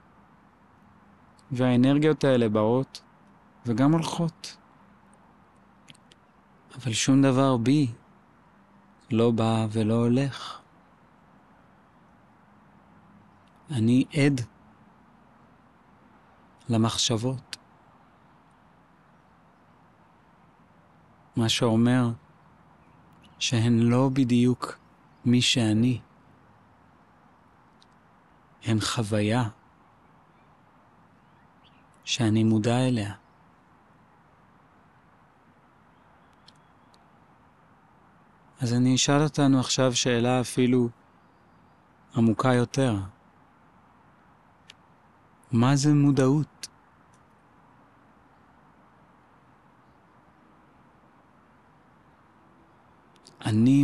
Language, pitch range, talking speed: Hebrew, 115-135 Hz, 45 wpm